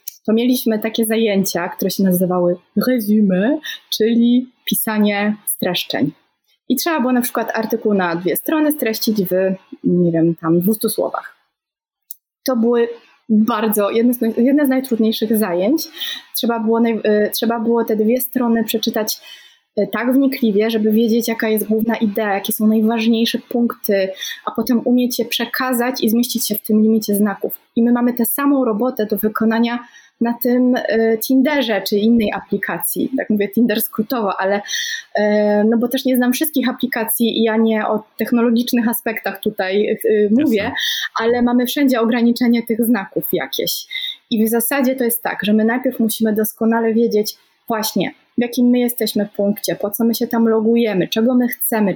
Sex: female